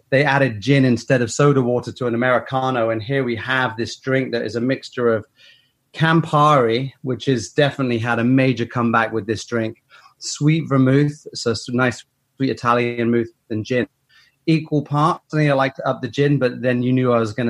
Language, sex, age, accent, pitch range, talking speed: English, male, 30-49, British, 120-145 Hz, 190 wpm